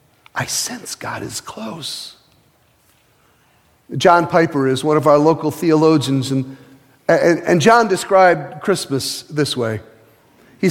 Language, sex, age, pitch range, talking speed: English, male, 50-69, 140-185 Hz, 125 wpm